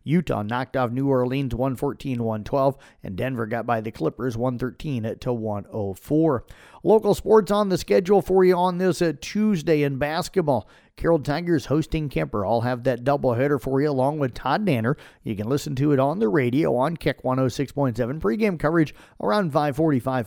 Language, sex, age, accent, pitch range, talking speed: English, male, 50-69, American, 120-155 Hz, 160 wpm